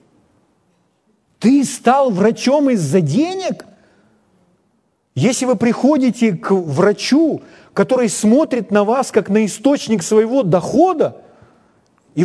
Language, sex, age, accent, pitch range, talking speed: Ukrainian, male, 40-59, native, 190-265 Hz, 100 wpm